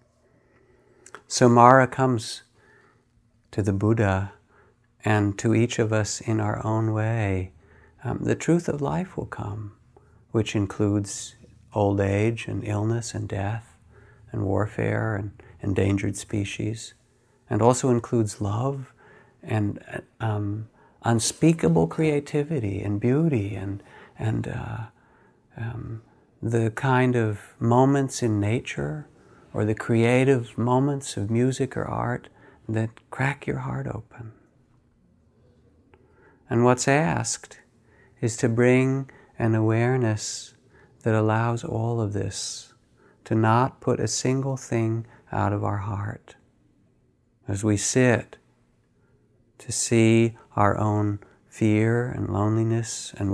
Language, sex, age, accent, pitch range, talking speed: English, male, 50-69, American, 105-125 Hz, 115 wpm